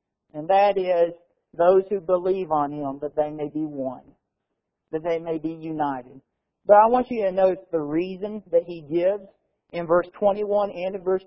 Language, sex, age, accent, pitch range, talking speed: English, male, 50-69, American, 155-245 Hz, 185 wpm